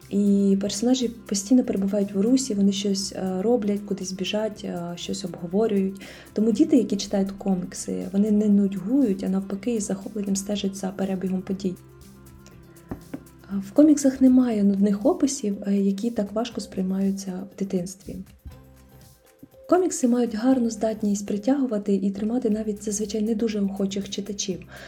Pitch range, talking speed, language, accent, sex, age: 190-225 Hz, 130 wpm, Ukrainian, native, female, 20-39